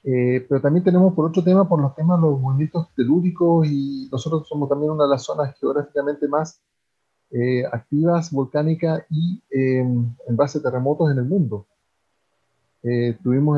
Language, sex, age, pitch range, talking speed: English, male, 40-59, 125-155 Hz, 165 wpm